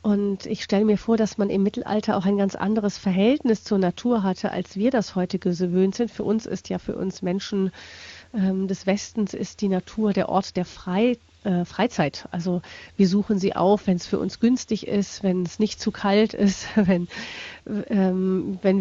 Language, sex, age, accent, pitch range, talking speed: German, female, 40-59, German, 185-215 Hz, 190 wpm